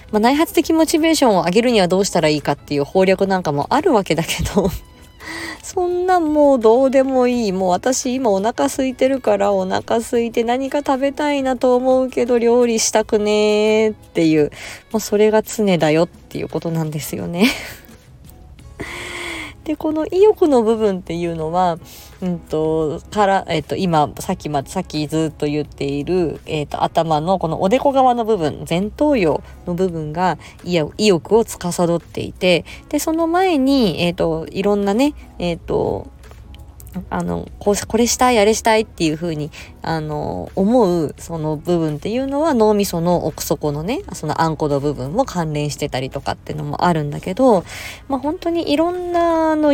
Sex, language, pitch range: female, Japanese, 160-255 Hz